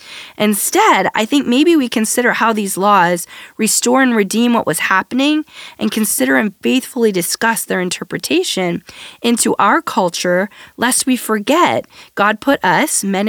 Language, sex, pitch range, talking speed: English, female, 190-235 Hz, 145 wpm